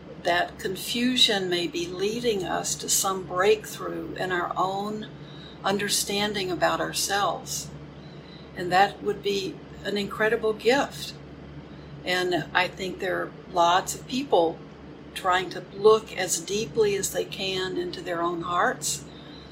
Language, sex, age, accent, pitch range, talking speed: English, female, 60-79, American, 170-215 Hz, 130 wpm